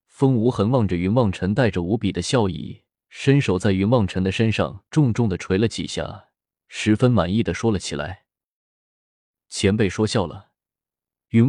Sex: male